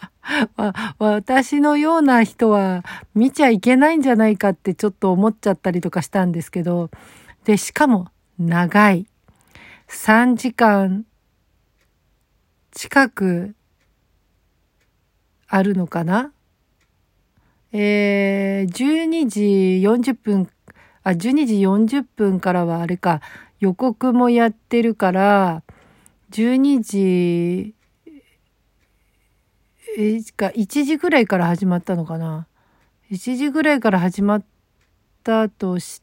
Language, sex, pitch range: Japanese, female, 175-230 Hz